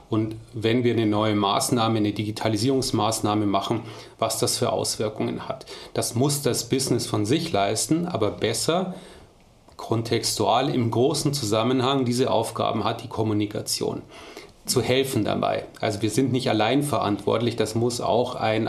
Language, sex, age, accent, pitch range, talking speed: German, male, 30-49, German, 110-130 Hz, 145 wpm